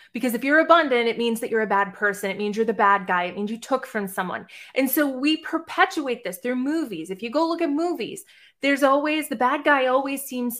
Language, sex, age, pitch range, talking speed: English, female, 20-39, 225-295 Hz, 245 wpm